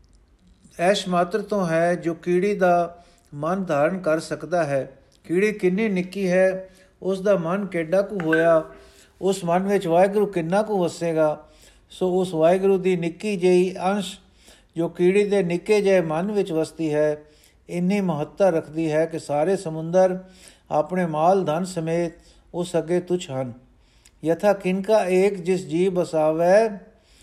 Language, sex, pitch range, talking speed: Punjabi, male, 155-190 Hz, 145 wpm